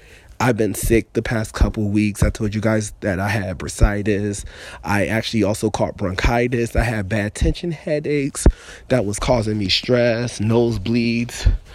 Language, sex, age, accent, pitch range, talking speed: English, male, 30-49, American, 105-125 Hz, 165 wpm